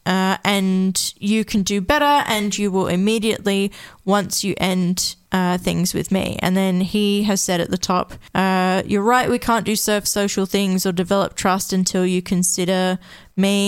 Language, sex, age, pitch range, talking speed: English, female, 20-39, 185-210 Hz, 180 wpm